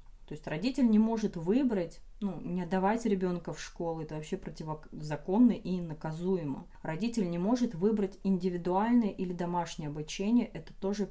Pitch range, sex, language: 160-200 Hz, female, Russian